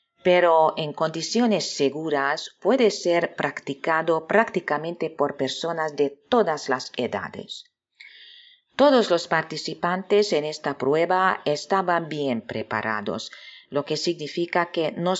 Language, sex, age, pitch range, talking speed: Spanish, female, 40-59, 145-195 Hz, 110 wpm